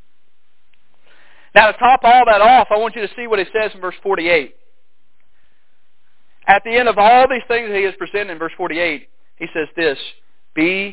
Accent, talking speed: American, 190 wpm